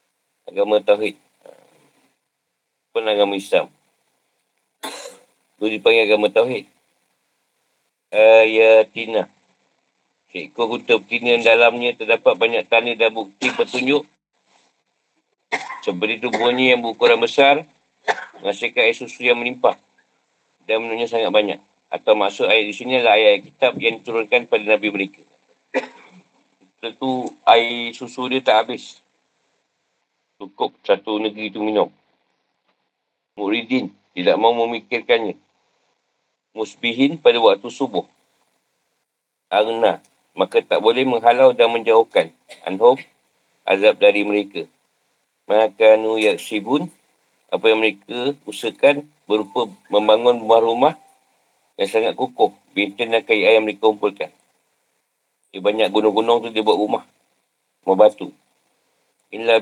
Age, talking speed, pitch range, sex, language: 40-59, 110 wpm, 110-145 Hz, male, Malay